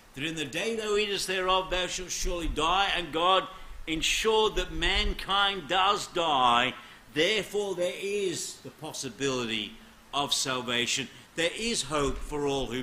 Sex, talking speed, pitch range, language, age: male, 145 wpm, 140-210 Hz, English, 60-79